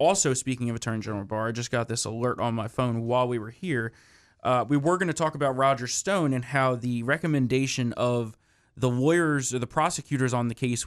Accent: American